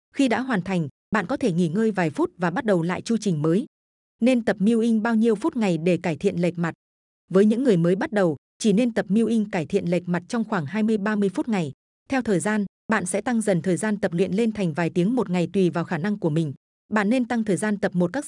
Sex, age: female, 20-39